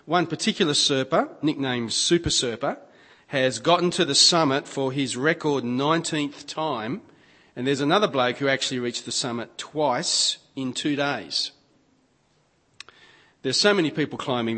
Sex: male